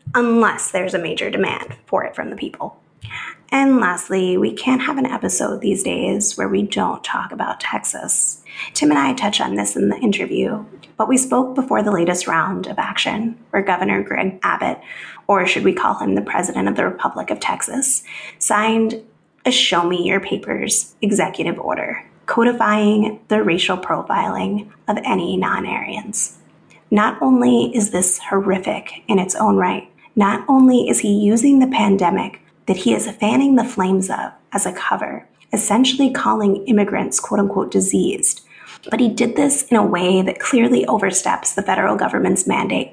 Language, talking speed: English, 160 wpm